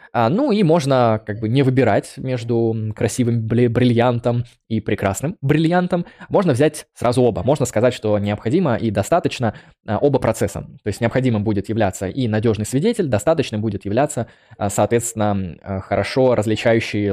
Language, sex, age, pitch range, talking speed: Russian, male, 20-39, 105-135 Hz, 155 wpm